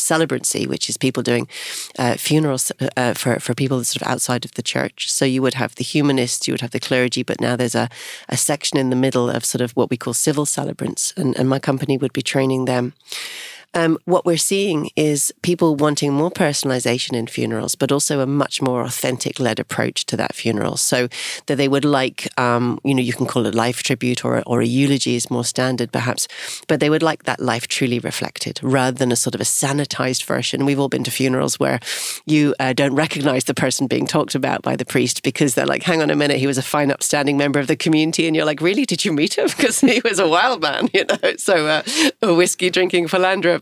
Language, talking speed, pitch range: English, 235 wpm, 125-160 Hz